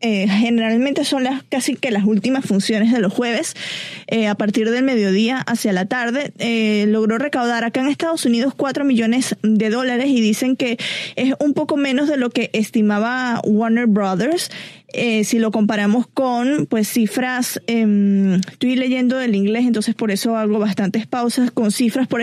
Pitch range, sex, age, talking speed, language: 215-260 Hz, female, 20-39, 175 wpm, Spanish